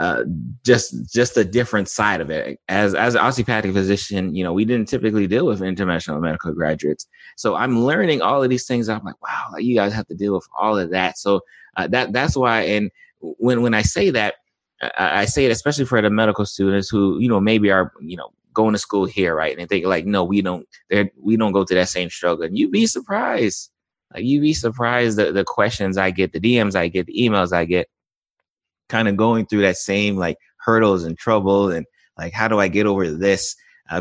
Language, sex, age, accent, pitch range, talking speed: English, male, 20-39, American, 90-110 Hz, 225 wpm